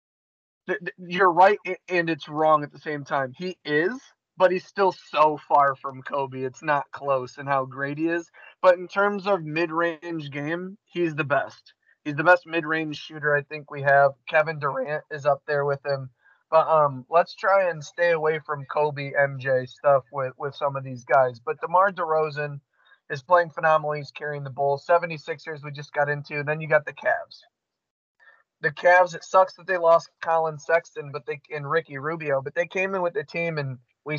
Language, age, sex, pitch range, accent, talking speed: English, 20-39, male, 145-170 Hz, American, 195 wpm